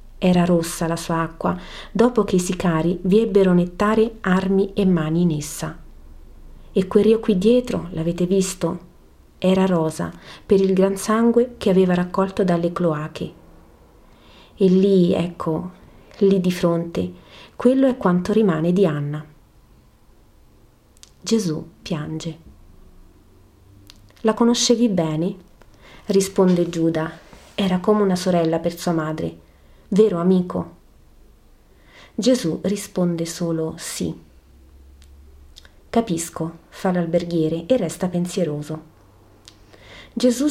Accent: native